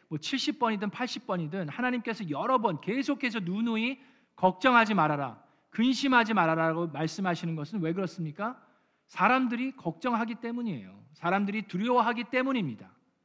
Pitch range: 170-230 Hz